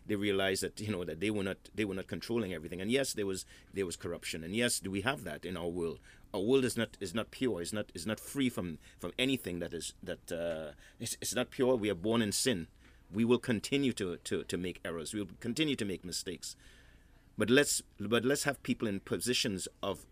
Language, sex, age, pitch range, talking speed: English, male, 30-49, 90-115 Hz, 240 wpm